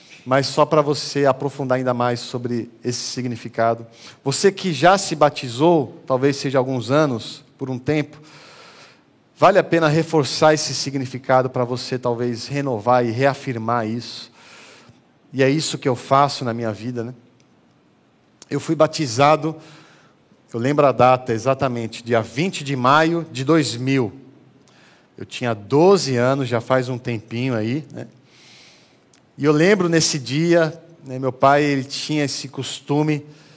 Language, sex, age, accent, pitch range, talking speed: Portuguese, male, 40-59, Brazilian, 125-145 Hz, 145 wpm